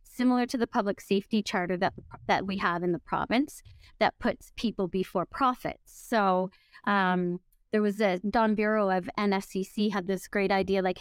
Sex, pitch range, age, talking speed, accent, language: female, 190-225 Hz, 30-49, 175 wpm, American, English